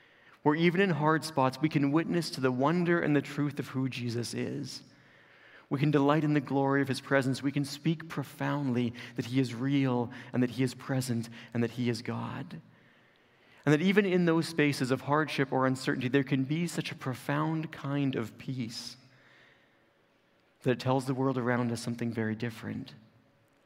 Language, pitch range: English, 125-155 Hz